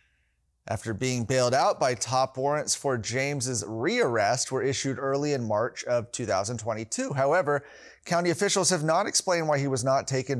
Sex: male